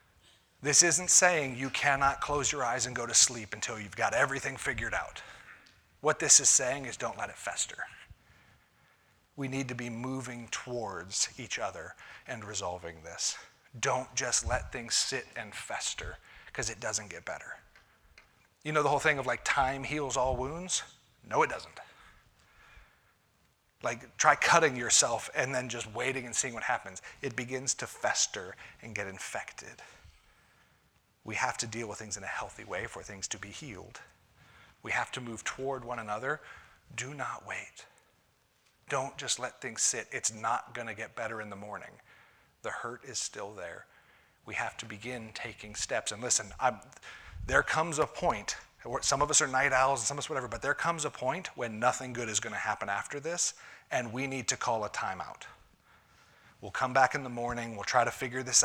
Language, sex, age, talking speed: English, male, 30-49, 185 wpm